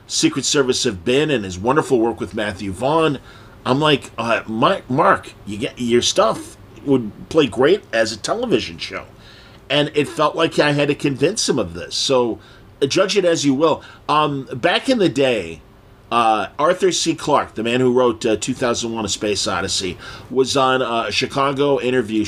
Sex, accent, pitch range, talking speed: male, American, 110-140 Hz, 185 wpm